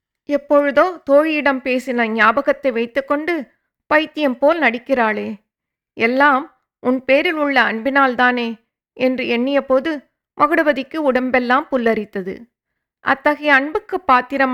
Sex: female